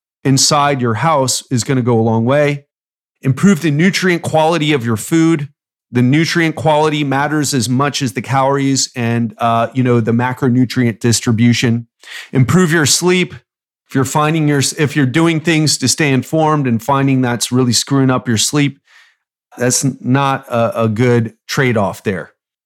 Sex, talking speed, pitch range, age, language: male, 165 wpm, 125-150 Hz, 40-59, English